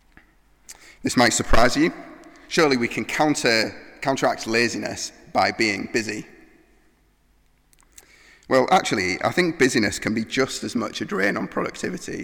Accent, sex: British, male